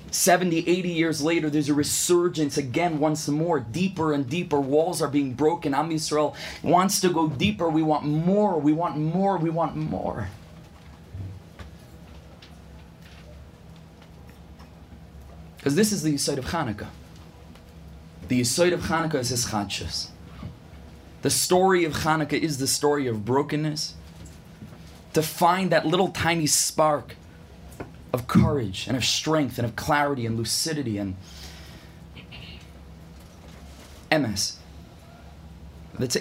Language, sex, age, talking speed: English, male, 30-49, 125 wpm